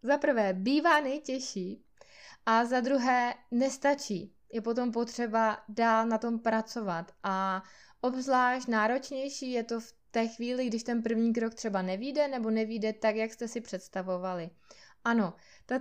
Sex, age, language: female, 20-39, Czech